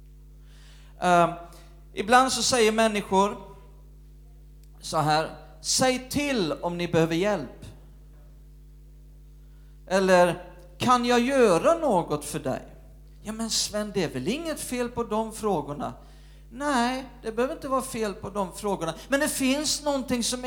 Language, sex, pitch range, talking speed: Swedish, male, 150-240 Hz, 130 wpm